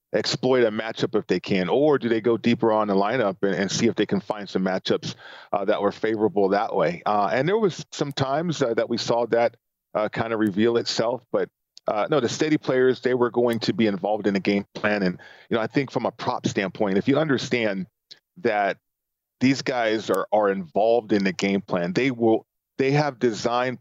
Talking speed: 220 wpm